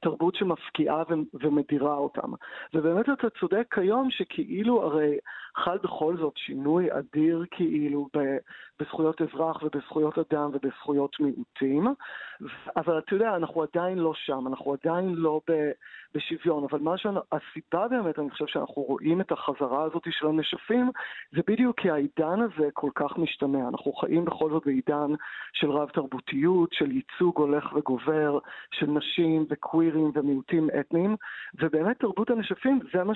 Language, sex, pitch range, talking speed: Hebrew, male, 150-185 Hz, 140 wpm